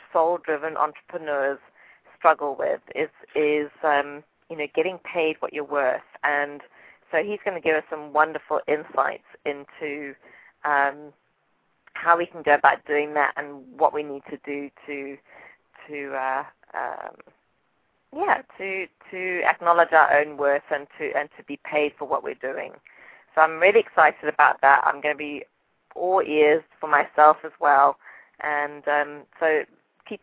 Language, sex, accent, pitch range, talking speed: English, female, British, 145-170 Hz, 160 wpm